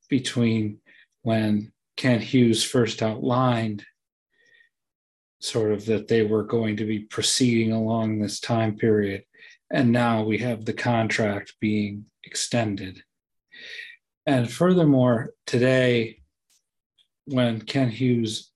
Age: 40-59